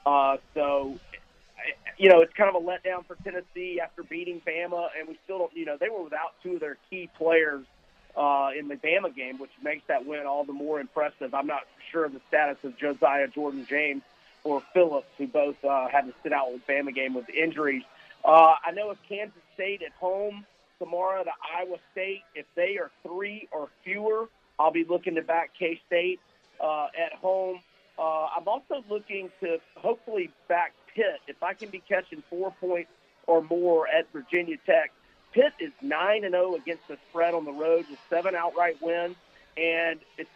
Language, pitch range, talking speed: English, 150-185 Hz, 190 wpm